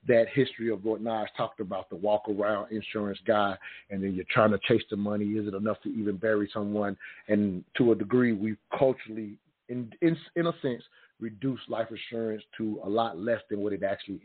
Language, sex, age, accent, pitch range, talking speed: English, male, 40-59, American, 100-115 Hz, 200 wpm